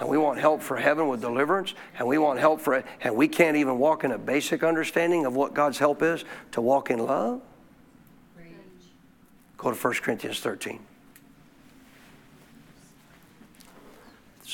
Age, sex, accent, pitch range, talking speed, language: 50-69, male, American, 150-220 Hz, 155 wpm, English